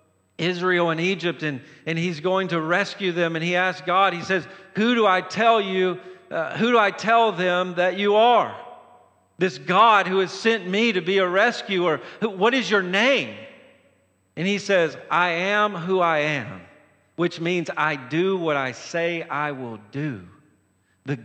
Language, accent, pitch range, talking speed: English, American, 165-210 Hz, 180 wpm